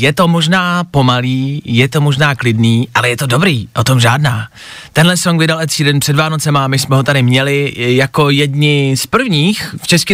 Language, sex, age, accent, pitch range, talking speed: Czech, male, 20-39, native, 140-175 Hz, 190 wpm